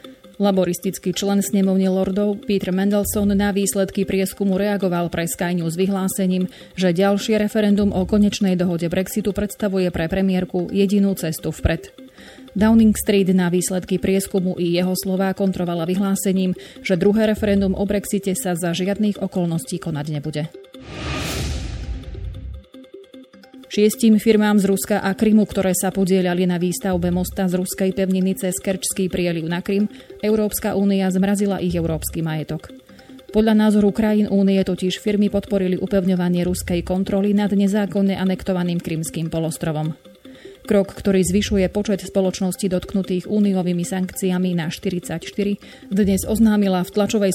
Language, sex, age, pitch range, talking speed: Slovak, female, 30-49, 180-205 Hz, 130 wpm